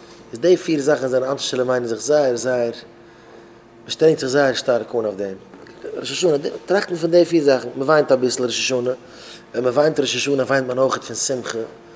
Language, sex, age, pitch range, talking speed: English, male, 20-39, 115-135 Hz, 225 wpm